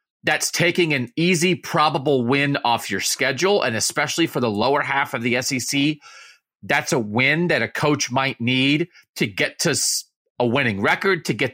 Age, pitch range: 40-59, 130-170 Hz